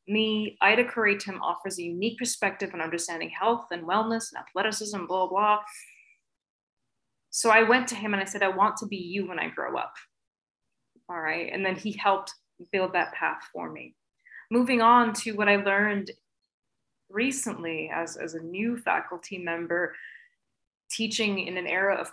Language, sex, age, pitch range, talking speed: English, female, 20-39, 185-230 Hz, 170 wpm